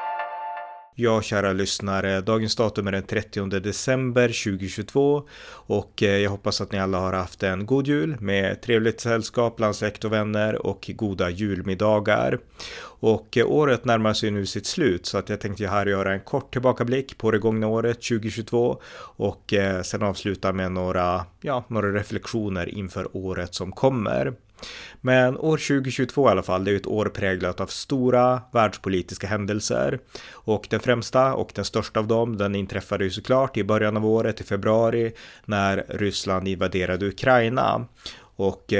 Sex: male